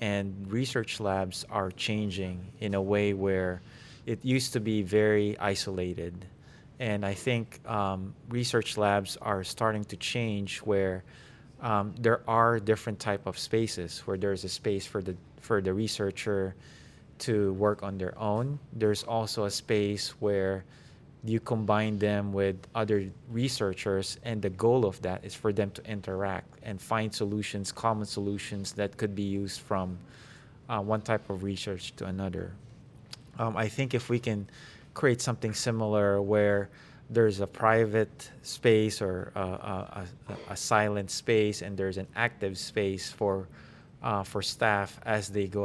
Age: 20-39